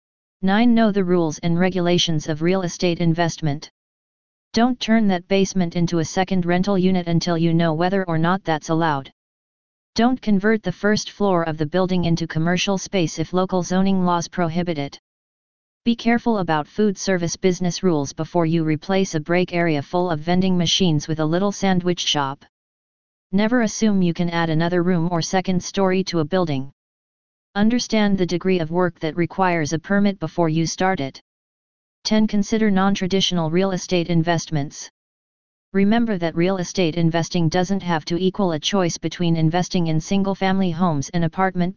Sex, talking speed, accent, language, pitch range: female, 165 wpm, American, English, 165-195 Hz